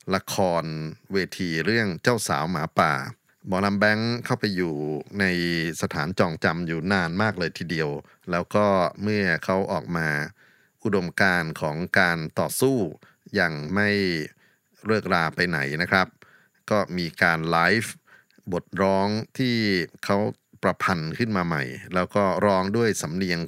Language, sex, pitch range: Thai, male, 85-105 Hz